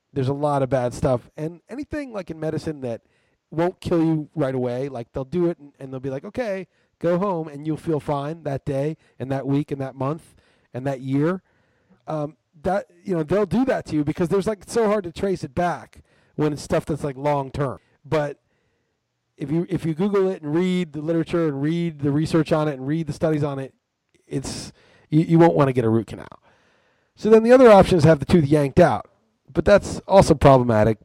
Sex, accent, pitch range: male, American, 130-165 Hz